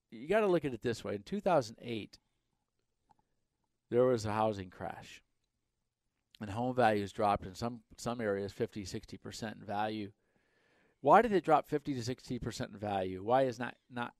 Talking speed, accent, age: 165 wpm, American, 50-69